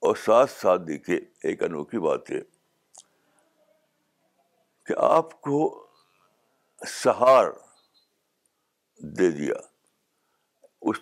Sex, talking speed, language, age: male, 80 wpm, Urdu, 60-79